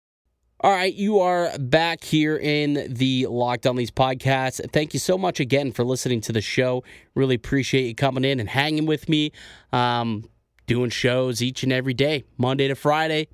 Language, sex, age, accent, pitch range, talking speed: English, male, 20-39, American, 115-150 Hz, 185 wpm